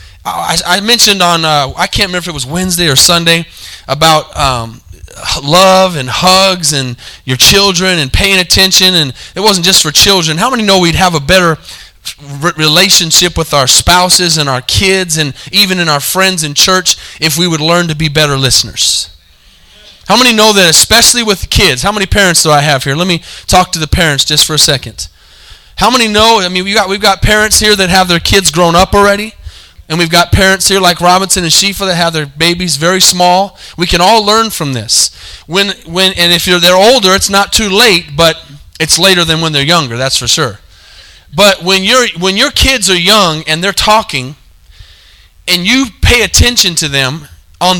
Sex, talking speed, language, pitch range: male, 200 wpm, English, 140-190 Hz